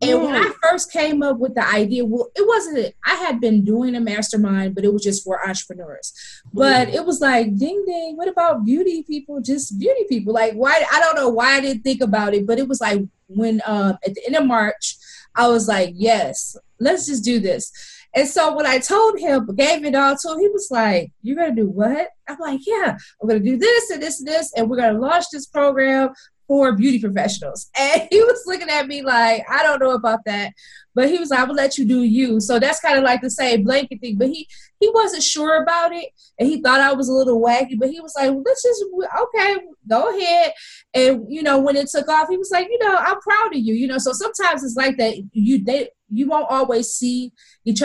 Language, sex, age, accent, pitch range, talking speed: English, female, 20-39, American, 225-315 Hz, 235 wpm